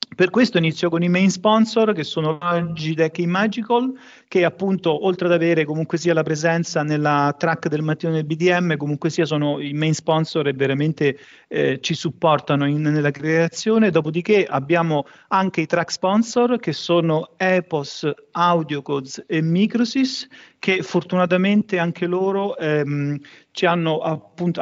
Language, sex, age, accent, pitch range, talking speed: Italian, male, 40-59, native, 150-185 Hz, 150 wpm